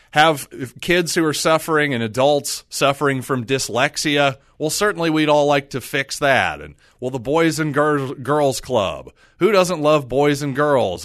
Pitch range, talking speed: 120-150 Hz, 175 wpm